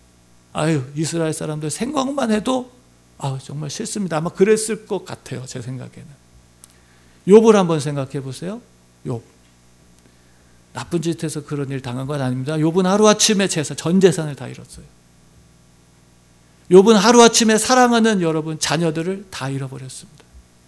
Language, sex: Korean, male